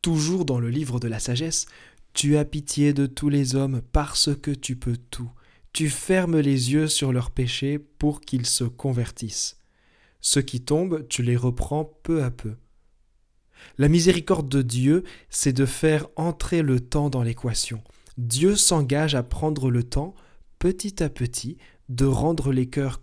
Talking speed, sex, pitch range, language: 165 wpm, male, 120-150 Hz, French